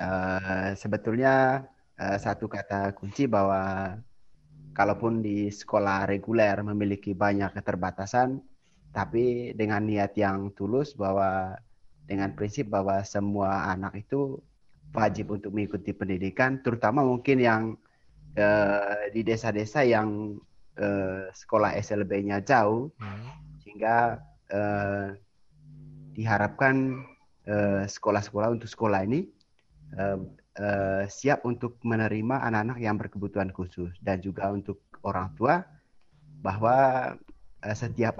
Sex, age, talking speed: male, 30-49, 105 wpm